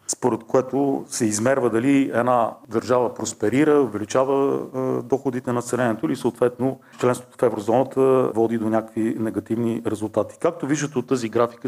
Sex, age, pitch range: male, 40-59, 115-140 Hz